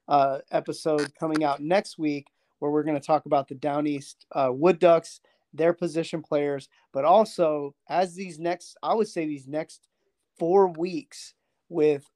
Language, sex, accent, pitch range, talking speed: English, male, American, 150-180 Hz, 170 wpm